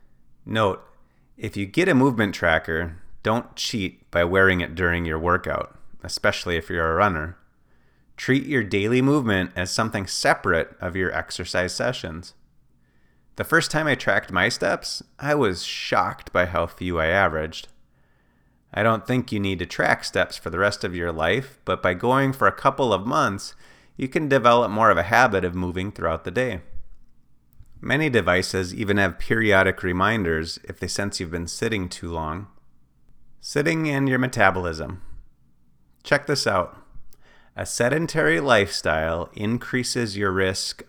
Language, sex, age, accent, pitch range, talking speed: English, male, 30-49, American, 85-115 Hz, 155 wpm